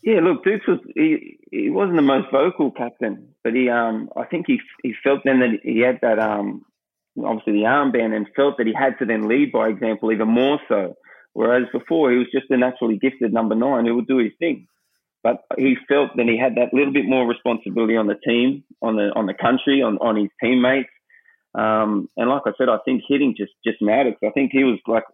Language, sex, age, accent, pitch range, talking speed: English, male, 30-49, Australian, 110-135 Hz, 225 wpm